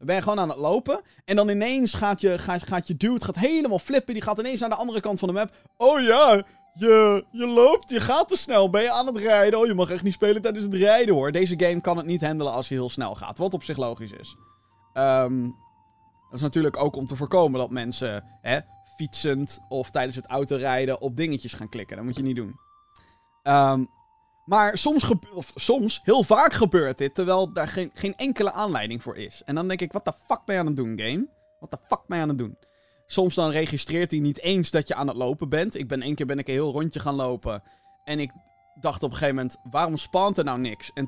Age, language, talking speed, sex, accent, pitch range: 20-39, Dutch, 245 wpm, male, Dutch, 135-210 Hz